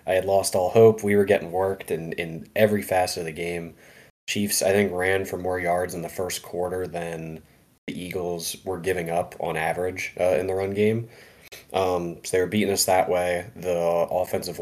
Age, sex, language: 20-39, male, English